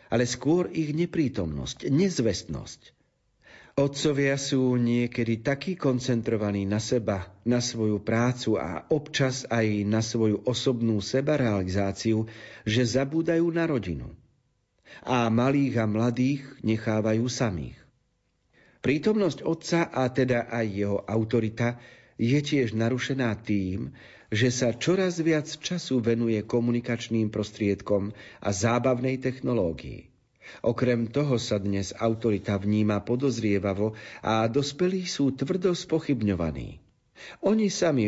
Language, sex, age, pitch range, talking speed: Slovak, male, 50-69, 105-135 Hz, 105 wpm